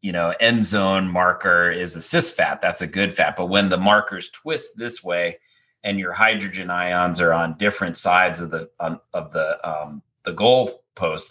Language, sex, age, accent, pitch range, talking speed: English, male, 30-49, American, 90-110 Hz, 195 wpm